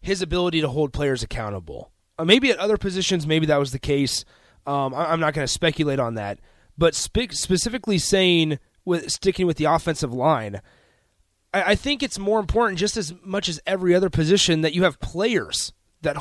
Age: 30-49